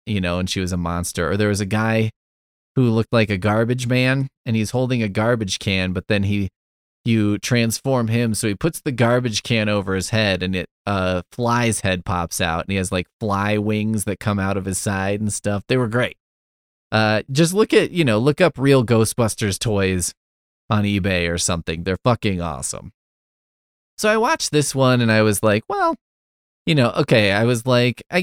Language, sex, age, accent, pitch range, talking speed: English, male, 20-39, American, 100-135 Hz, 210 wpm